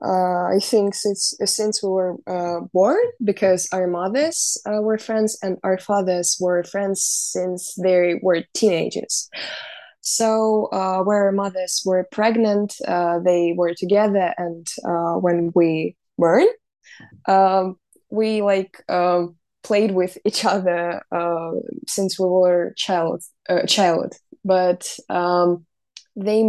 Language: English